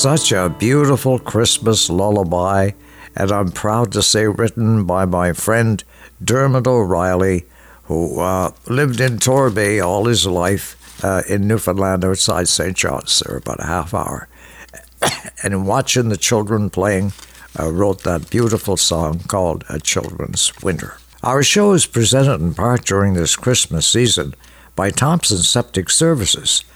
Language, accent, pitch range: English, American, 95-125 Hz